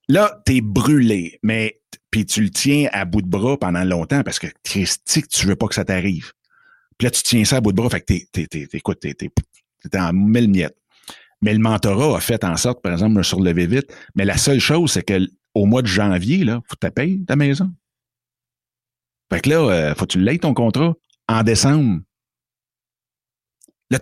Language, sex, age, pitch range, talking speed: French, male, 60-79, 95-130 Hz, 220 wpm